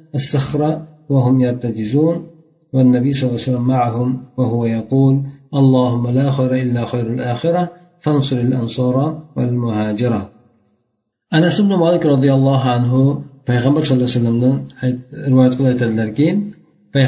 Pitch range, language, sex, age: 125-160 Hz, Bulgarian, male, 50-69